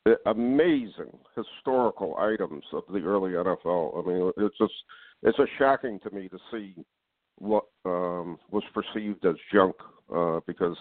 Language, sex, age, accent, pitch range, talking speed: English, male, 60-79, American, 90-110 Hz, 150 wpm